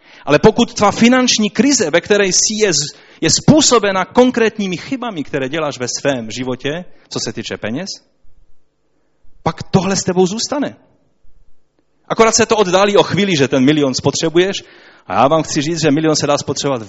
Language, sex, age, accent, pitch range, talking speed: Czech, male, 30-49, native, 125-170 Hz, 170 wpm